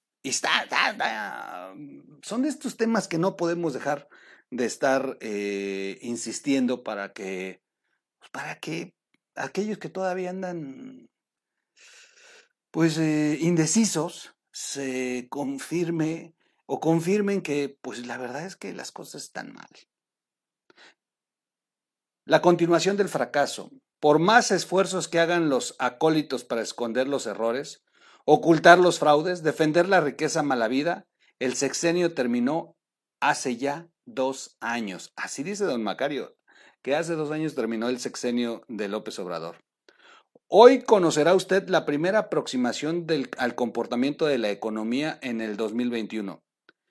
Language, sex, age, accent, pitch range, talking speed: Spanish, male, 50-69, Mexican, 125-180 Hz, 125 wpm